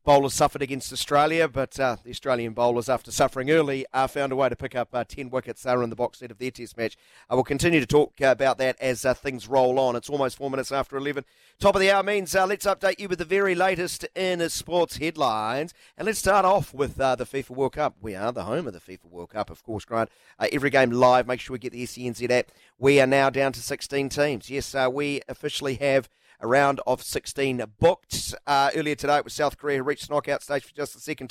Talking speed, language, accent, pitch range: 250 wpm, English, Australian, 125-150 Hz